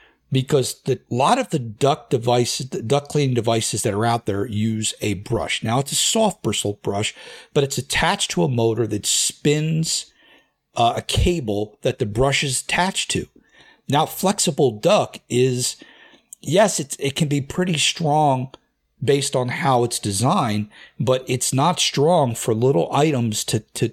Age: 50-69